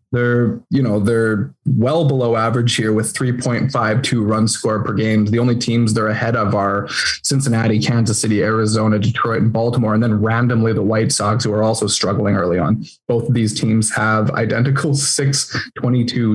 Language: English